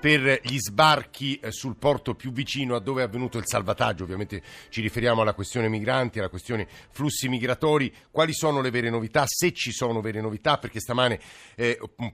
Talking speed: 180 wpm